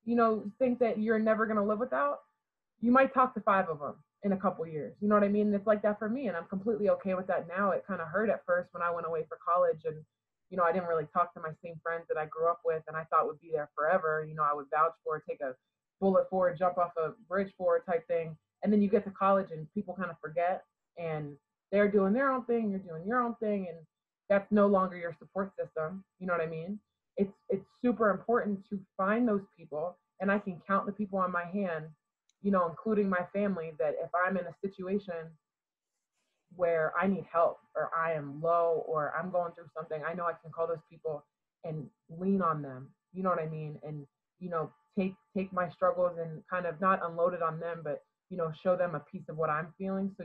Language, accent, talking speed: English, American, 250 wpm